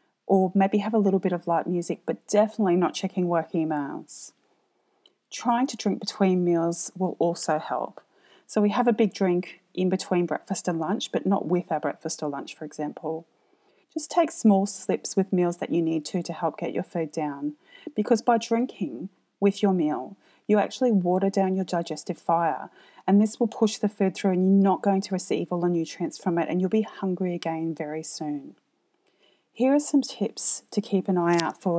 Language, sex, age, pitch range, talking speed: English, female, 30-49, 165-210 Hz, 200 wpm